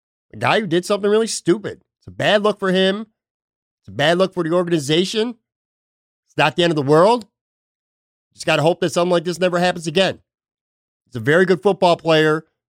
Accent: American